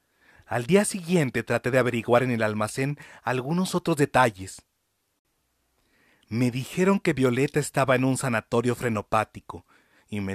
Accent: Mexican